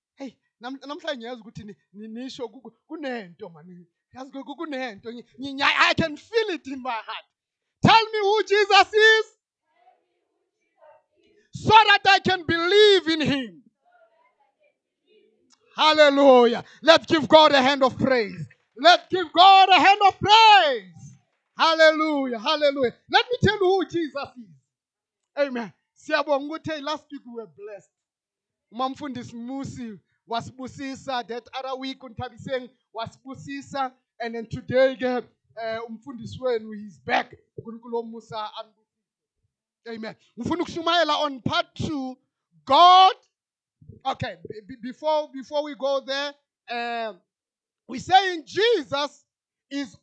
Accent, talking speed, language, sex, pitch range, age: South African, 105 wpm, English, male, 235-340 Hz, 30-49